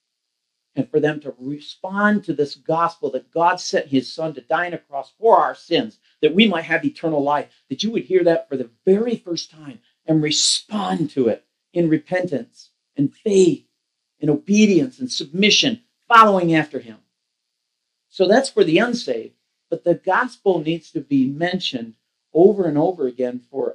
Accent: American